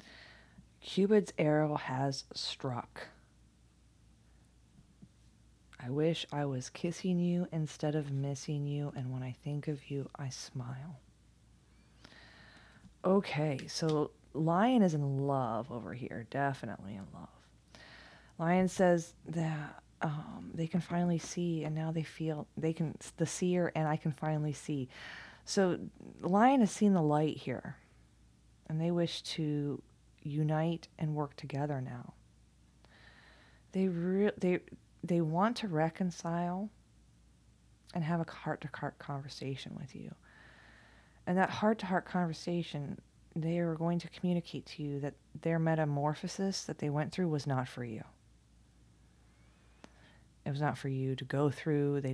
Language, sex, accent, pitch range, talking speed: English, female, American, 135-170 Hz, 130 wpm